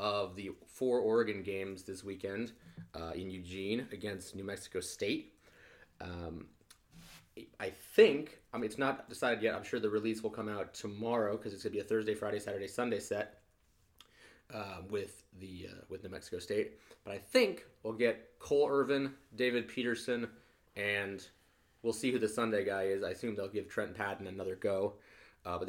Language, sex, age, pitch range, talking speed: English, male, 30-49, 95-115 Hz, 180 wpm